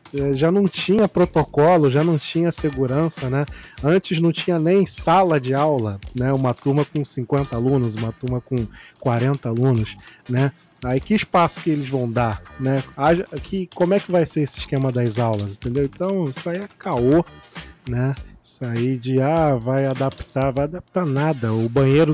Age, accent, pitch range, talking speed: 20-39, Brazilian, 130-165 Hz, 170 wpm